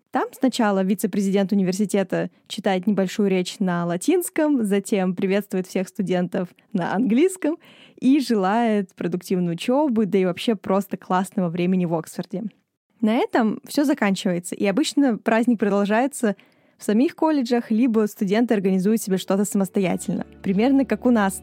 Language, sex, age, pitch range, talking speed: Russian, female, 20-39, 190-240 Hz, 135 wpm